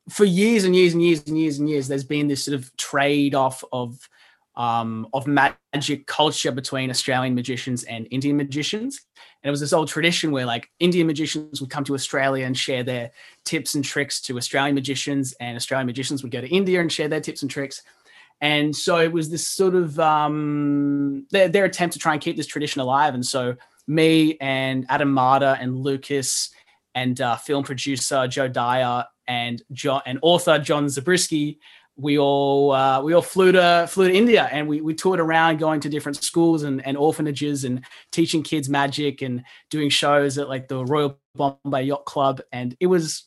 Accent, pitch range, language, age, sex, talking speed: Australian, 135-165 Hz, English, 20-39, male, 195 wpm